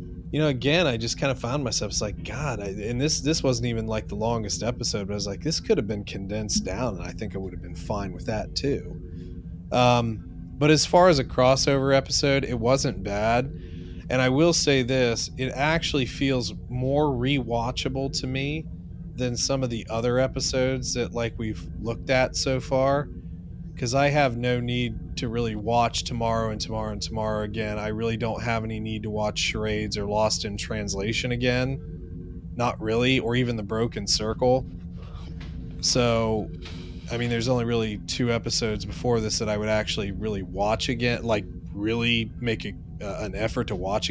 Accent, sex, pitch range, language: American, male, 100-130 Hz, English